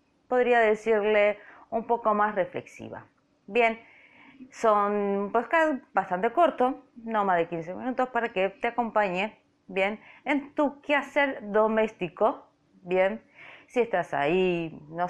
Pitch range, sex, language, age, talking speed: 180-260 Hz, female, Spanish, 20-39, 115 wpm